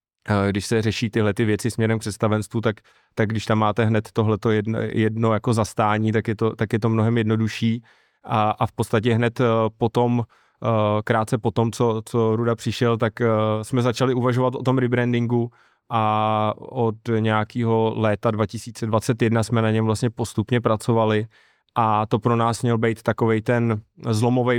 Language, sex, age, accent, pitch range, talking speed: Czech, male, 20-39, native, 110-120 Hz, 160 wpm